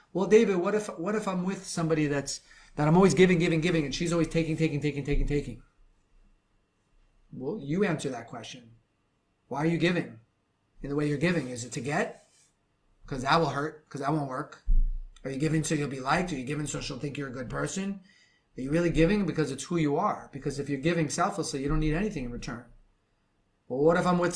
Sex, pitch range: male, 135-160 Hz